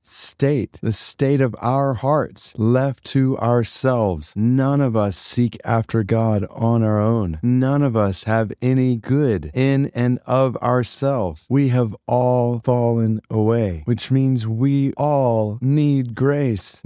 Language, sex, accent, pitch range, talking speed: English, male, American, 115-145 Hz, 140 wpm